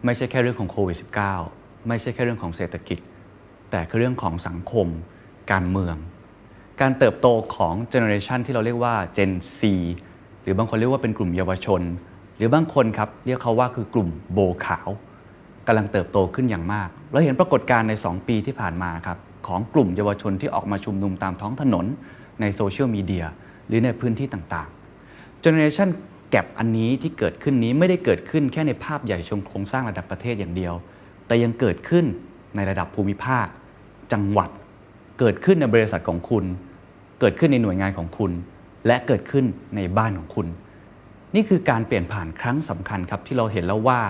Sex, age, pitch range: male, 20-39, 95-125 Hz